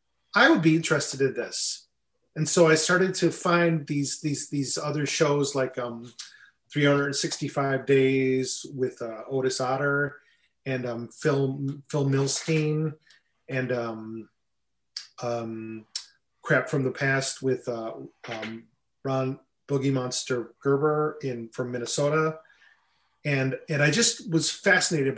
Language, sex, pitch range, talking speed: English, male, 130-155 Hz, 125 wpm